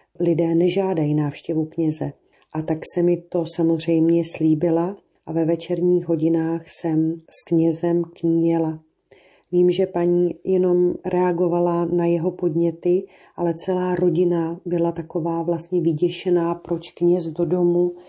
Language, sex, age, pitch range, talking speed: Slovak, female, 40-59, 170-180 Hz, 125 wpm